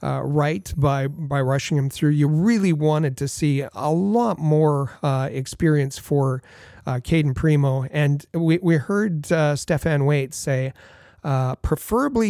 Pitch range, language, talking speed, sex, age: 140-170 Hz, English, 150 wpm, male, 40-59